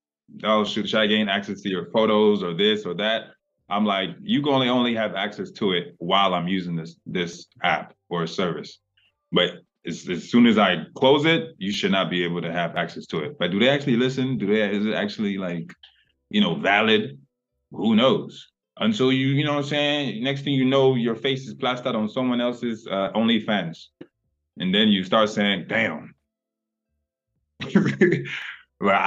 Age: 20-39